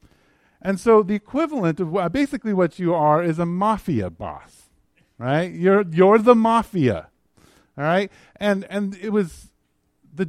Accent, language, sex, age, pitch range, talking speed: American, English, male, 50-69, 145-205 Hz, 145 wpm